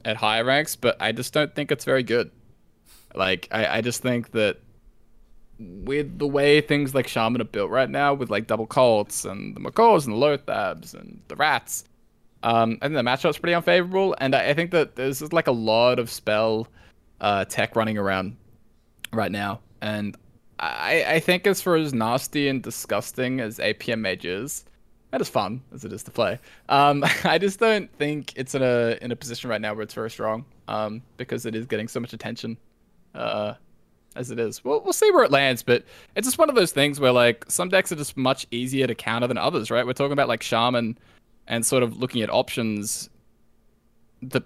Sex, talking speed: male, 205 wpm